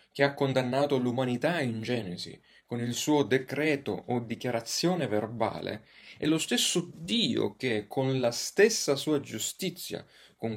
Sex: male